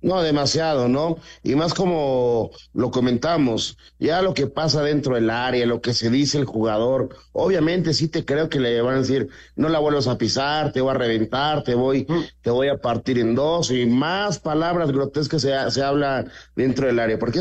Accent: Mexican